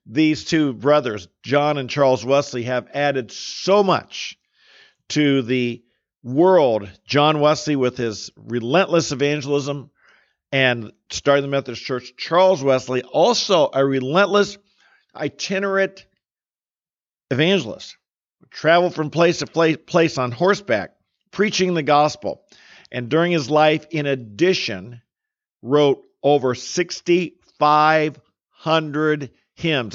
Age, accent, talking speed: 50-69, American, 105 wpm